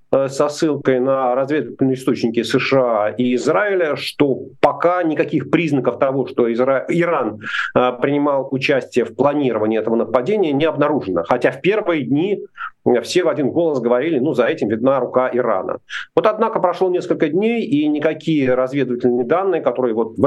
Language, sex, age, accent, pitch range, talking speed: Russian, male, 40-59, native, 125-170 Hz, 150 wpm